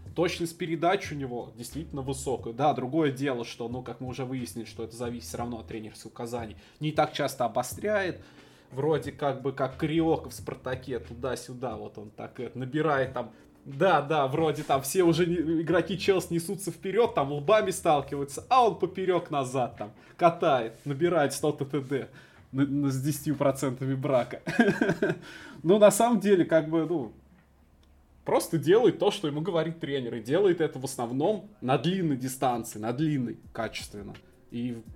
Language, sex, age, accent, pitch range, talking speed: Russian, male, 20-39, native, 120-155 Hz, 160 wpm